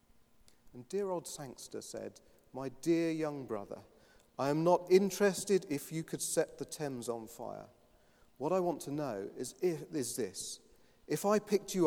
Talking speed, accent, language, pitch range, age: 165 wpm, British, English, 125-175 Hz, 40-59